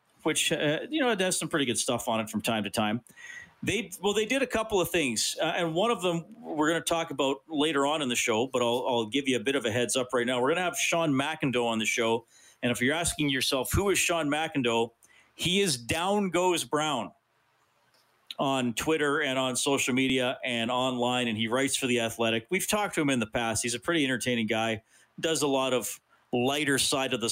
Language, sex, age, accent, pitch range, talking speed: English, male, 40-59, American, 120-165 Hz, 240 wpm